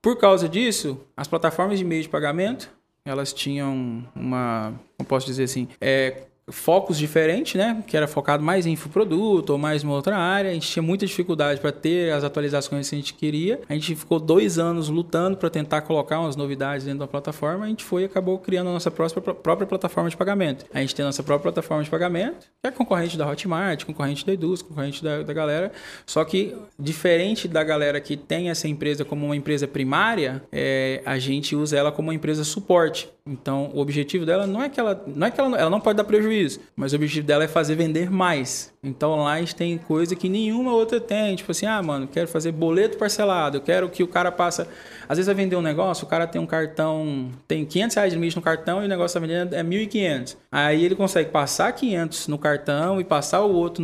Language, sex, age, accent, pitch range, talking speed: Portuguese, male, 20-39, Brazilian, 150-190 Hz, 220 wpm